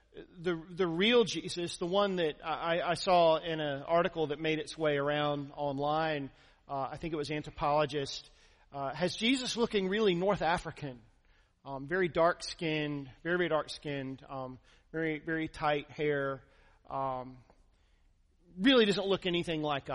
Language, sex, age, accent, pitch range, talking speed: English, male, 40-59, American, 145-190 Hz, 155 wpm